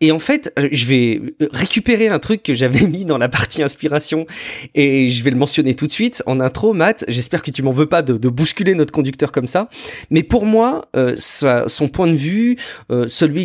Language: French